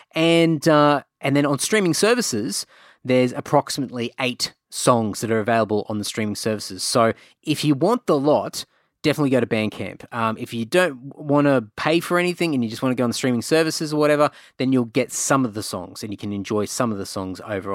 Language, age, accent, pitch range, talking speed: English, 20-39, Australian, 115-145 Hz, 220 wpm